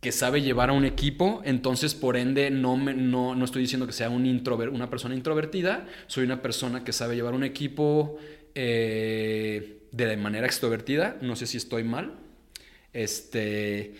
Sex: male